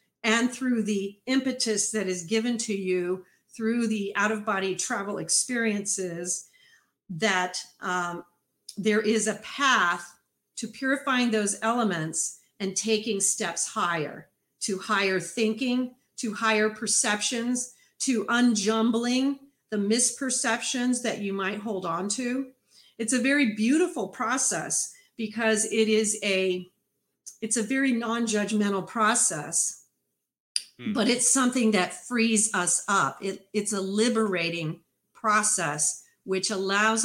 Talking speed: 115 wpm